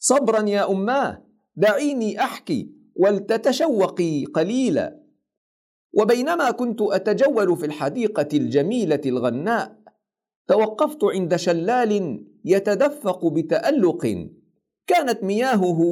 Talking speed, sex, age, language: 80 wpm, male, 50-69, Arabic